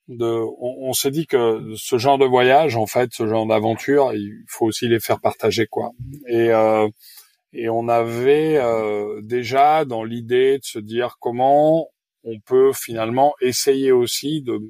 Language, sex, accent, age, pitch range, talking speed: French, male, French, 30-49, 110-140 Hz, 165 wpm